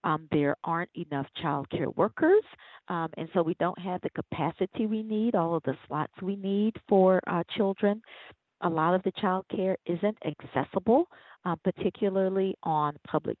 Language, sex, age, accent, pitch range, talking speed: English, female, 40-59, American, 160-215 Hz, 165 wpm